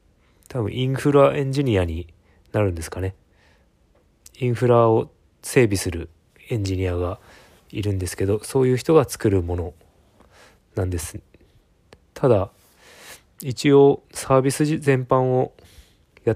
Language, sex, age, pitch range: Japanese, male, 20-39, 90-115 Hz